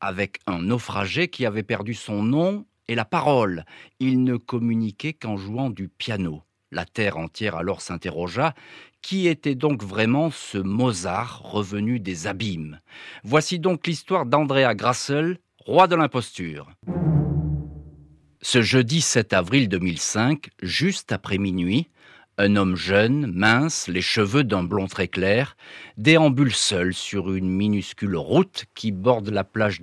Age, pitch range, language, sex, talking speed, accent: 50-69, 95-135 Hz, French, male, 135 wpm, French